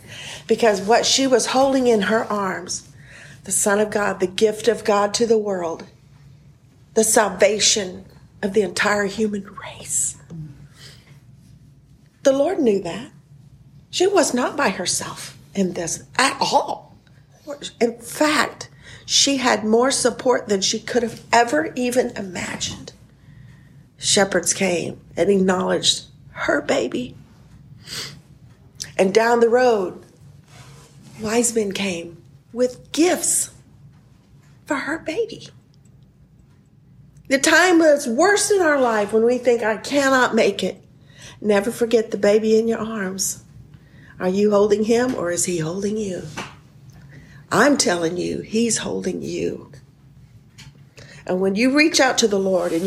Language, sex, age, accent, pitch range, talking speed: English, female, 50-69, American, 145-235 Hz, 130 wpm